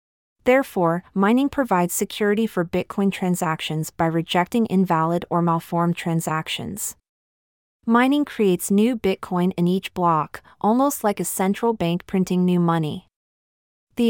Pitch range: 170-210 Hz